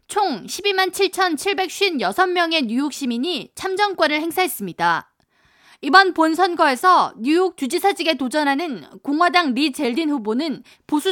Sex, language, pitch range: female, Korean, 265-355 Hz